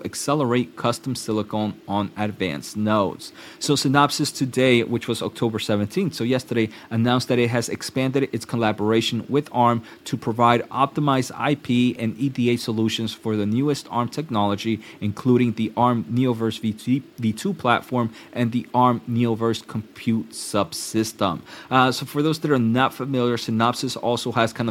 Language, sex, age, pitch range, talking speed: English, male, 30-49, 110-130 Hz, 145 wpm